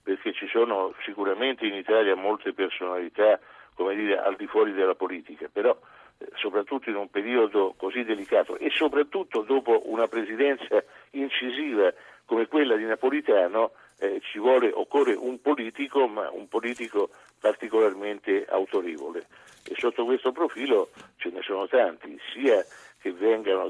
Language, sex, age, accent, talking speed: Italian, male, 50-69, native, 135 wpm